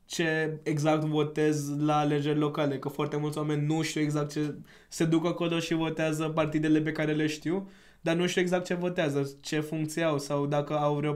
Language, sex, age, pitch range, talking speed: Romanian, male, 20-39, 145-160 Hz, 200 wpm